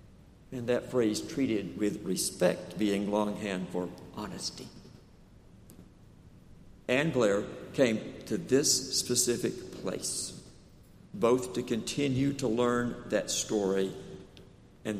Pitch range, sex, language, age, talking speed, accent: 105-145 Hz, male, English, 60-79, 100 wpm, American